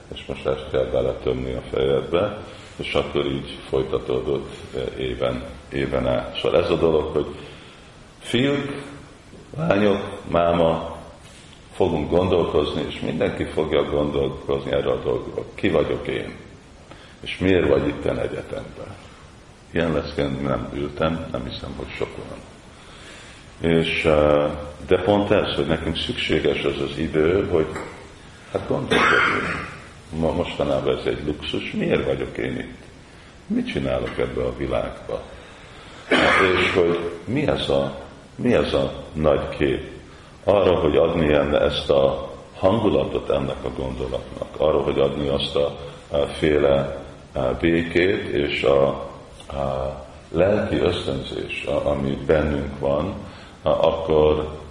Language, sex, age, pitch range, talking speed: Hungarian, male, 50-69, 70-80 Hz, 115 wpm